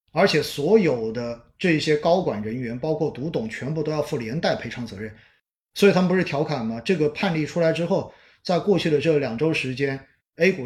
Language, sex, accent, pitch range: Chinese, male, native, 140-205 Hz